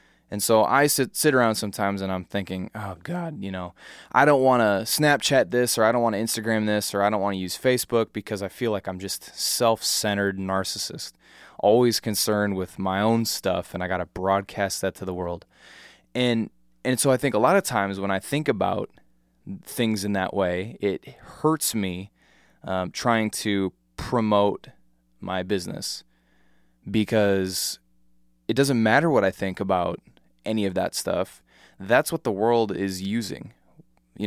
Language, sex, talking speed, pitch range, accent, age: English, male, 180 wpm, 95-115 Hz, American, 20-39